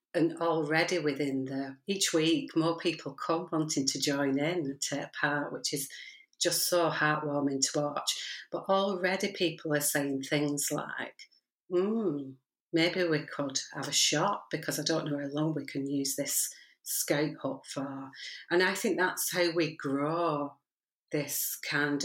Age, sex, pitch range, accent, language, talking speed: 40-59, female, 145-175 Hz, British, English, 165 wpm